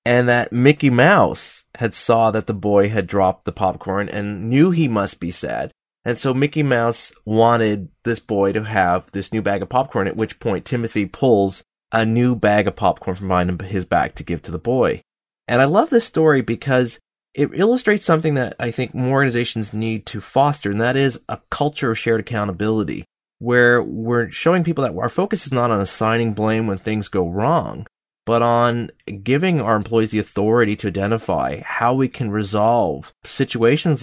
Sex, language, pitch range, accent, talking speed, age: male, English, 100-125 Hz, American, 190 wpm, 30-49